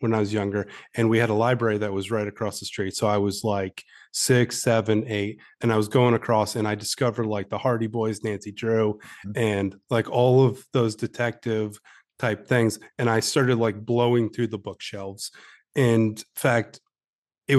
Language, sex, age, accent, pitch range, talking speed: English, male, 30-49, American, 115-135 Hz, 190 wpm